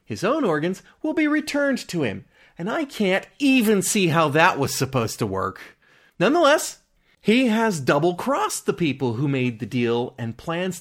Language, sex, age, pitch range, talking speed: English, male, 30-49, 120-195 Hz, 170 wpm